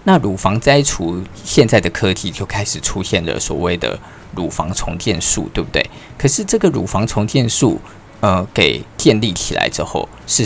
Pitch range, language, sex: 90-110 Hz, Chinese, male